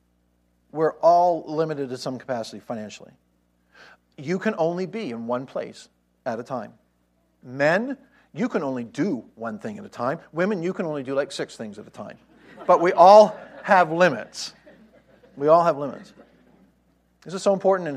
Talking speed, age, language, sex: 175 wpm, 50-69, English, male